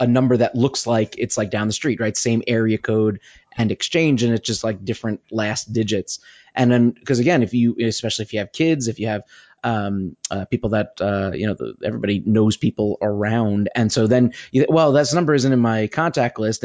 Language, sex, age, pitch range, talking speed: English, male, 30-49, 110-125 Hz, 215 wpm